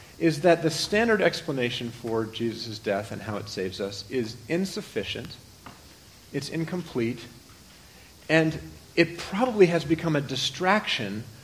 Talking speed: 125 wpm